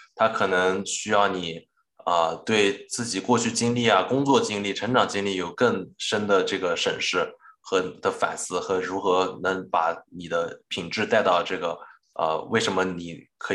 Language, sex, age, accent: Chinese, male, 20-39, native